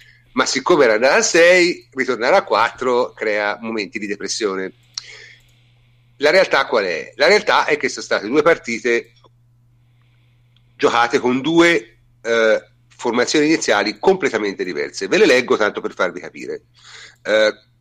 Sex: male